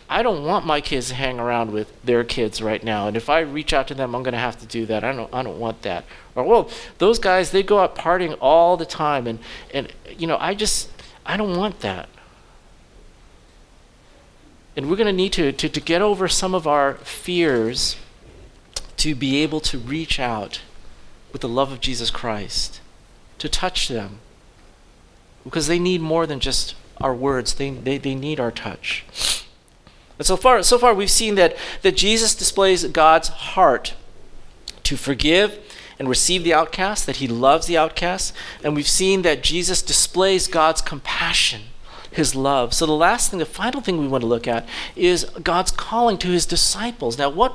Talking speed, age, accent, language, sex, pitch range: 190 wpm, 40-59, American, English, male, 130-190 Hz